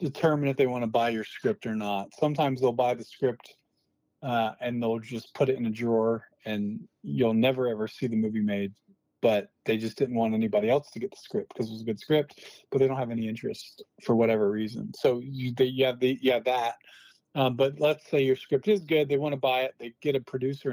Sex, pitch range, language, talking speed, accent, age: male, 115-135 Hz, English, 235 wpm, American, 40-59